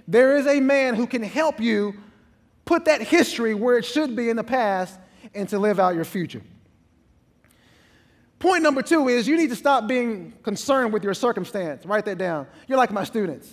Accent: American